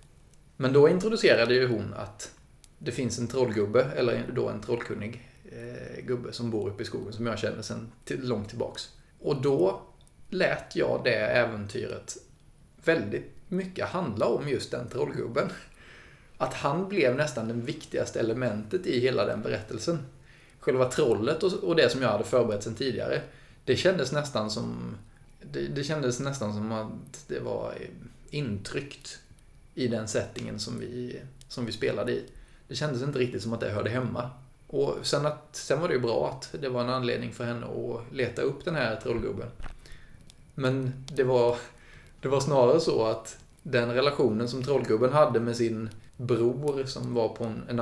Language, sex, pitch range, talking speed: Swedish, male, 115-130 Hz, 165 wpm